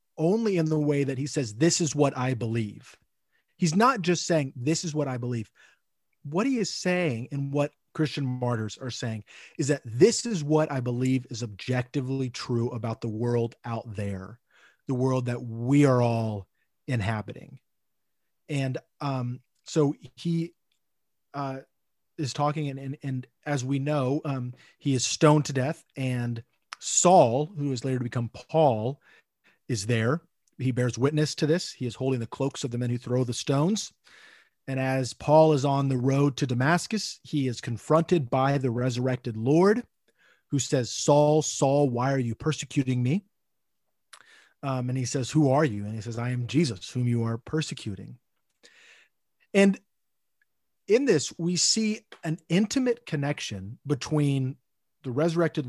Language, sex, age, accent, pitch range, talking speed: English, male, 30-49, American, 120-155 Hz, 165 wpm